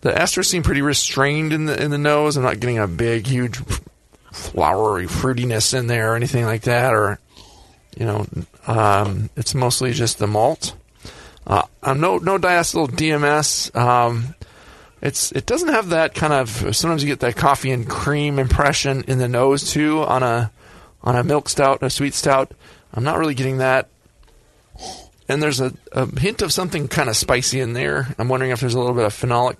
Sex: male